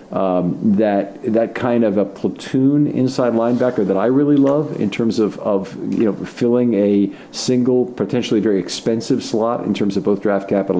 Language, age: English, 50-69